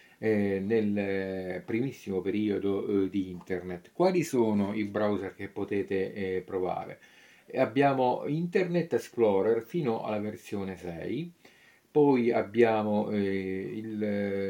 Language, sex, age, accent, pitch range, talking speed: Italian, male, 40-59, native, 95-115 Hz, 90 wpm